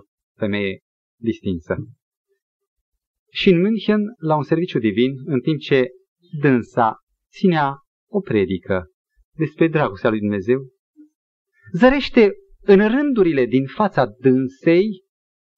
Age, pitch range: 30-49, 125-200 Hz